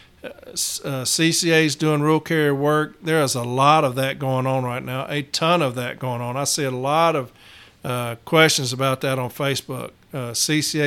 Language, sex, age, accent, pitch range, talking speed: English, male, 50-69, American, 130-150 Hz, 190 wpm